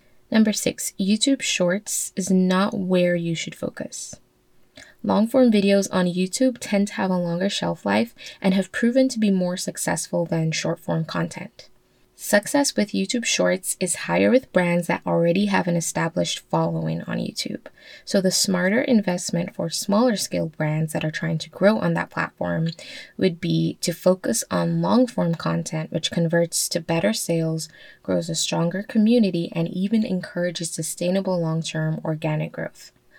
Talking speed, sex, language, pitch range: 160 wpm, female, English, 165-205 Hz